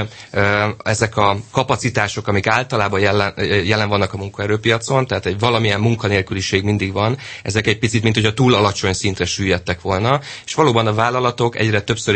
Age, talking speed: 30-49, 165 wpm